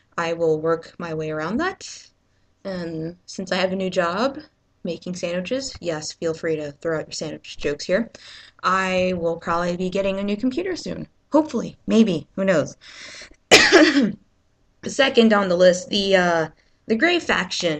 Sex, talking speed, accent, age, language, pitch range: female, 165 wpm, American, 20-39, English, 170-225 Hz